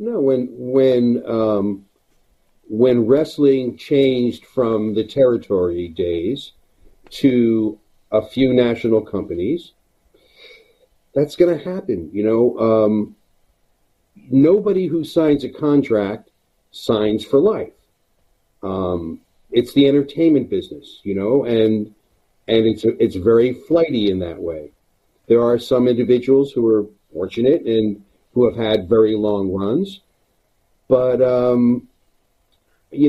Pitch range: 110-145 Hz